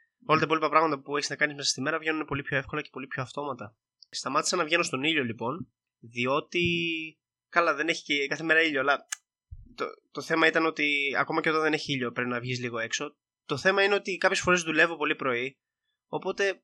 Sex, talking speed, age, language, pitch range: male, 215 wpm, 20-39, Greek, 125-160 Hz